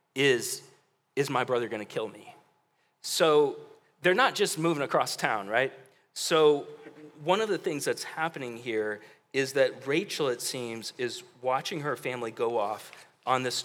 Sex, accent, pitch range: male, American, 125-165 Hz